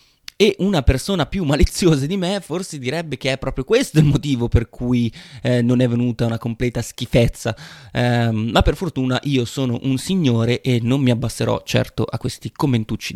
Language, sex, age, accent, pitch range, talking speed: Italian, male, 30-49, native, 120-145 Hz, 180 wpm